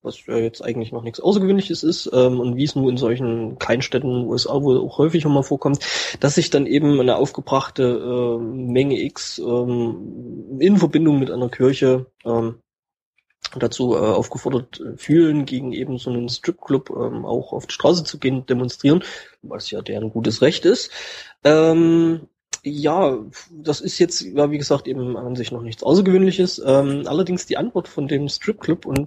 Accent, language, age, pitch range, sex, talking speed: German, German, 20-39, 125-170 Hz, male, 175 wpm